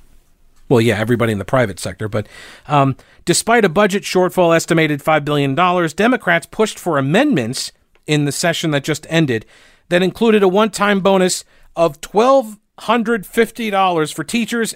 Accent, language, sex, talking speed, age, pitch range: American, English, male, 160 wpm, 50-69, 130-185 Hz